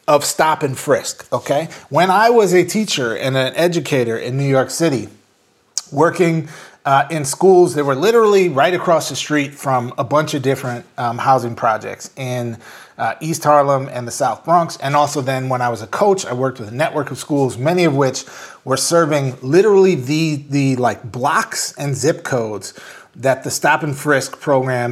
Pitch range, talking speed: 130-165 Hz, 190 wpm